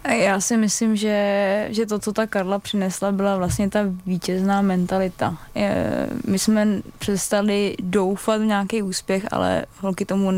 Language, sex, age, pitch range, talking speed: Czech, female, 20-39, 180-200 Hz, 145 wpm